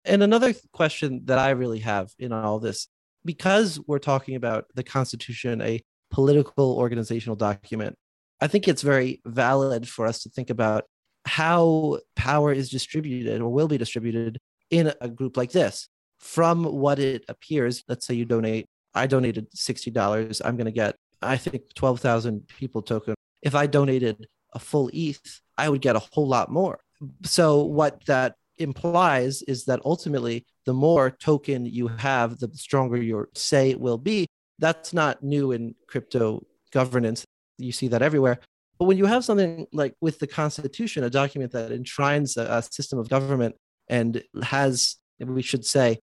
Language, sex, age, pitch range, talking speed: English, male, 30-49, 115-145 Hz, 165 wpm